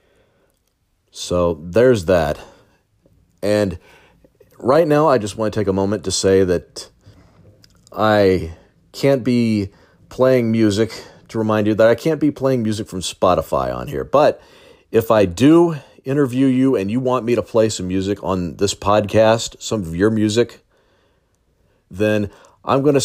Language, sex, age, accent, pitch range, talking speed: English, male, 40-59, American, 95-120 Hz, 155 wpm